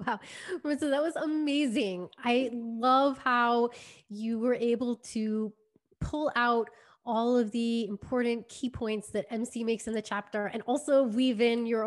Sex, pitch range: female, 215-255 Hz